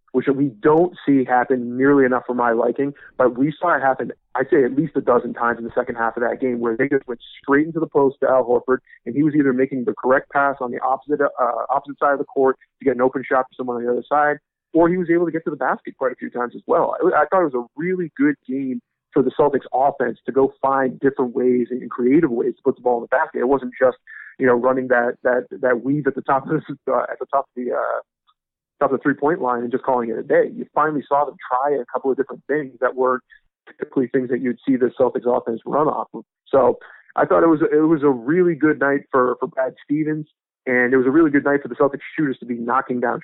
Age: 30-49